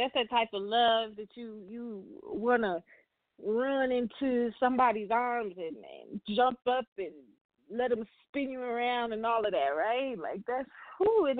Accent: American